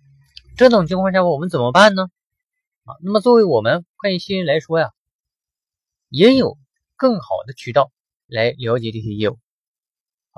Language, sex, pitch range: Chinese, male, 145-225 Hz